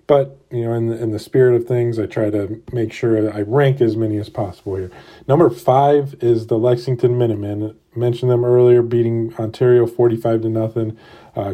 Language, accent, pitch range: English, American, 110-125 Hz